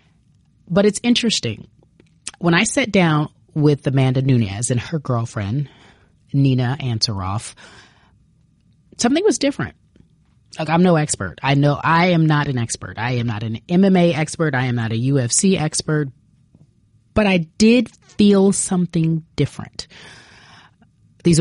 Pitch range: 125-170 Hz